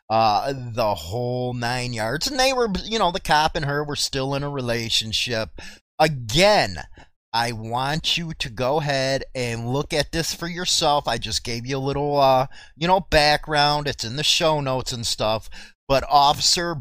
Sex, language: male, English